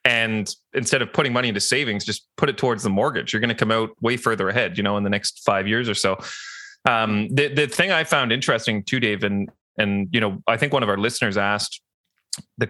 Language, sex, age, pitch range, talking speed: English, male, 30-49, 100-120 Hz, 240 wpm